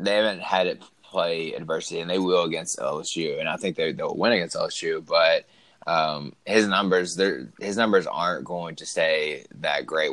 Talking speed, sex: 165 wpm, male